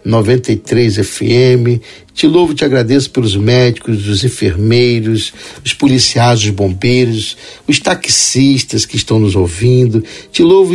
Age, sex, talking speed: 60-79, male, 130 wpm